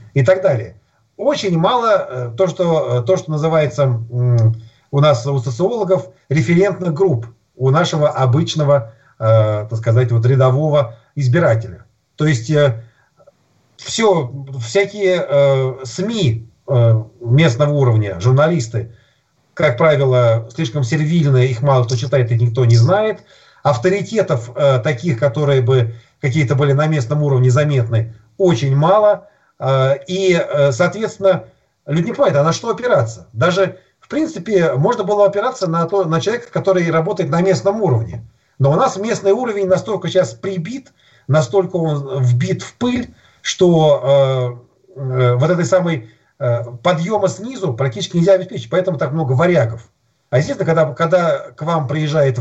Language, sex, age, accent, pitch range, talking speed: Russian, male, 50-69, native, 125-185 Hz, 130 wpm